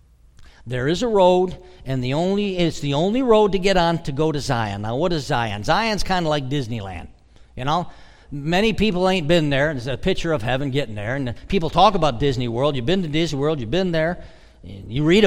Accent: American